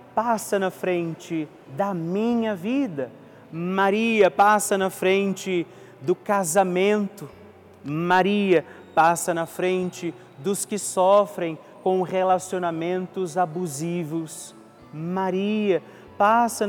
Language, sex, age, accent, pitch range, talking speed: Portuguese, male, 30-49, Brazilian, 165-195 Hz, 85 wpm